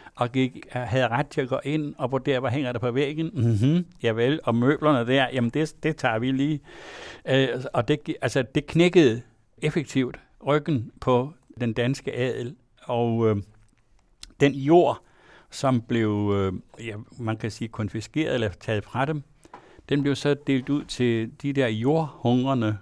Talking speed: 170 wpm